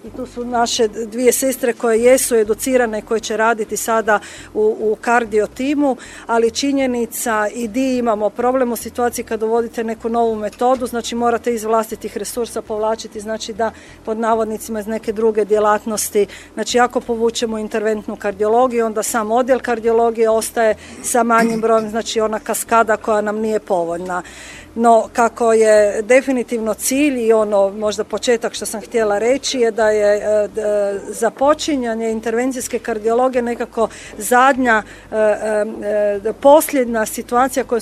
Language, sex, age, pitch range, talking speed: Croatian, female, 40-59, 215-235 Hz, 140 wpm